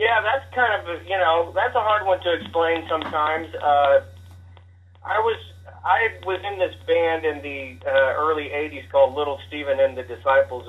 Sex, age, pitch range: male, 40-59, 125-160 Hz